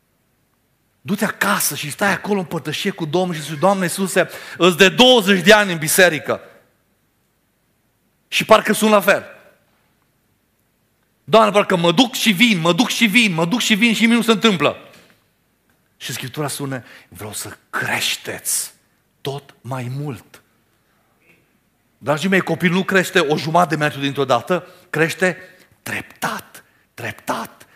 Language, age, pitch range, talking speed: Romanian, 40-59, 145-205 Hz, 145 wpm